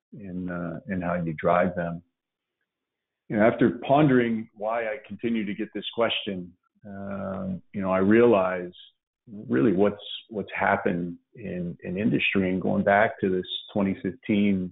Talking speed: 145 wpm